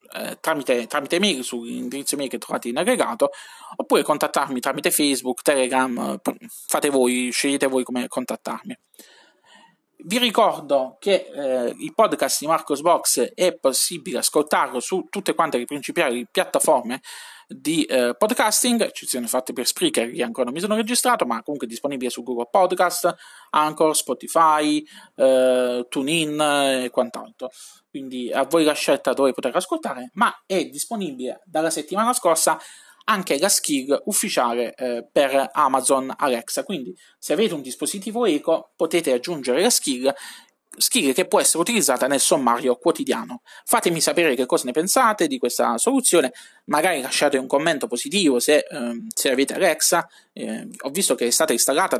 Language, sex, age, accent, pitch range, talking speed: Italian, male, 20-39, native, 130-195 Hz, 150 wpm